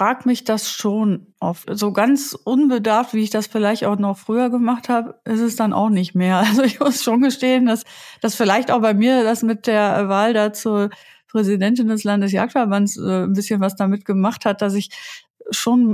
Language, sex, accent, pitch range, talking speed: German, female, German, 195-225 Hz, 195 wpm